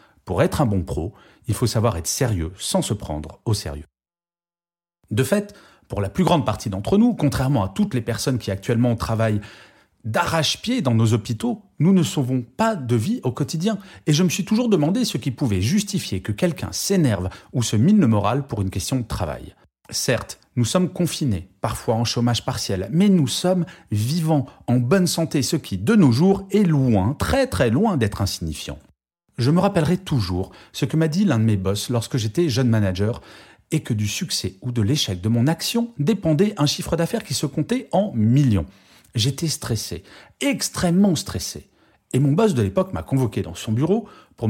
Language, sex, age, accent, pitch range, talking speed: French, male, 40-59, French, 105-170 Hz, 195 wpm